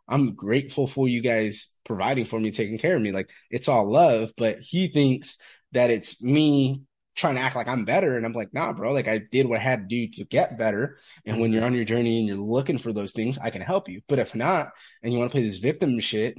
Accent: American